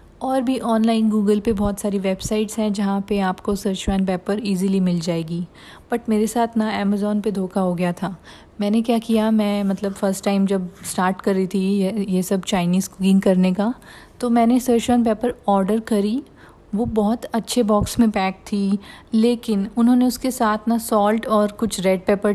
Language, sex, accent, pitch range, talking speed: Hindi, female, native, 195-225 Hz, 185 wpm